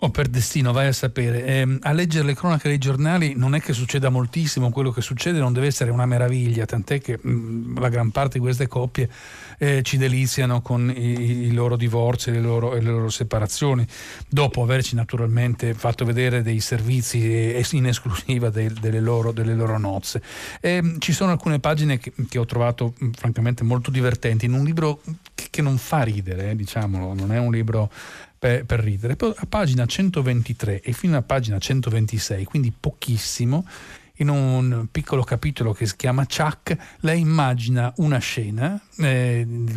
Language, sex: Italian, male